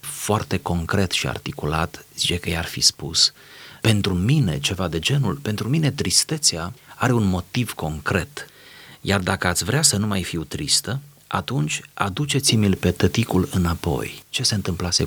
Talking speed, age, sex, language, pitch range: 150 wpm, 30-49, male, Romanian, 90-135 Hz